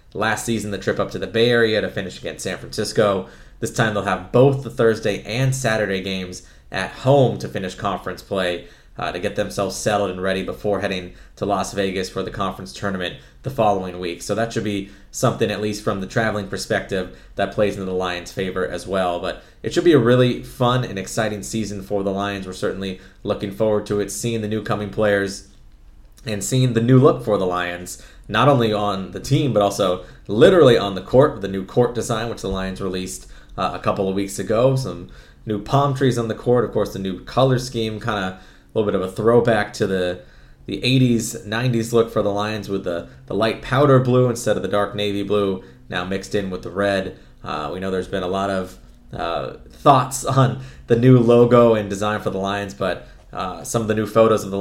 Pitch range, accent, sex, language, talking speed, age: 95-115 Hz, American, male, English, 220 wpm, 20-39